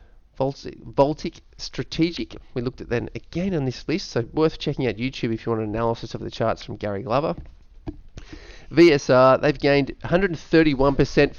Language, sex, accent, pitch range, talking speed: English, male, Australian, 110-140 Hz, 160 wpm